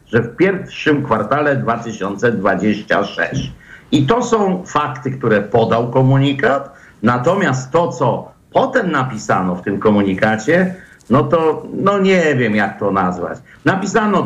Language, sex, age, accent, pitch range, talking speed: Polish, male, 50-69, native, 115-150 Hz, 120 wpm